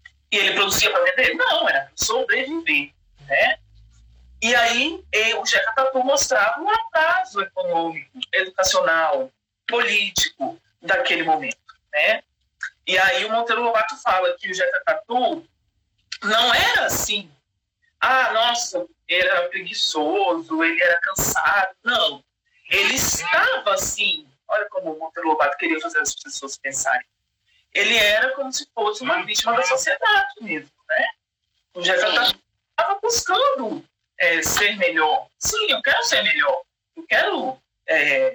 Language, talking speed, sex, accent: Portuguese, 130 wpm, male, Brazilian